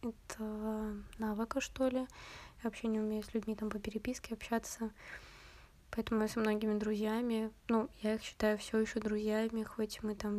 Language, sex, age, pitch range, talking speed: Russian, female, 20-39, 205-225 Hz, 170 wpm